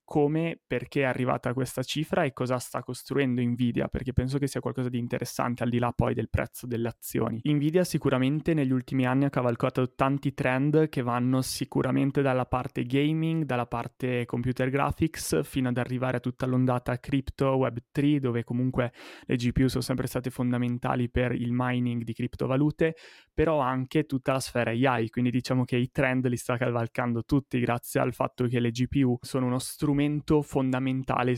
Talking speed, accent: 175 wpm, native